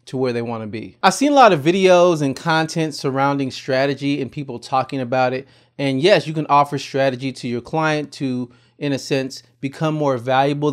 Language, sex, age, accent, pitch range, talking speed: English, male, 30-49, American, 125-150 Hz, 200 wpm